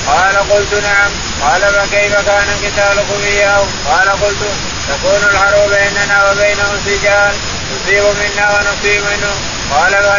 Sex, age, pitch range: male, 20-39, 200-205 Hz